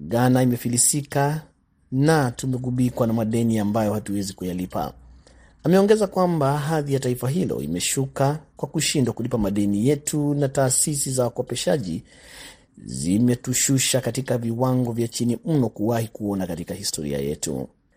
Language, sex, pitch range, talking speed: Swahili, male, 110-140 Hz, 120 wpm